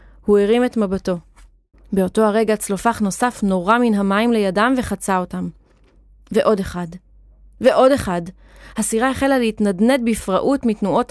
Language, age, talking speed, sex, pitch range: Hebrew, 30-49, 125 wpm, female, 195-230 Hz